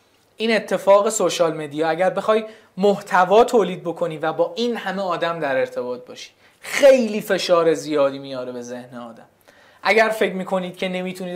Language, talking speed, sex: Persian, 155 wpm, male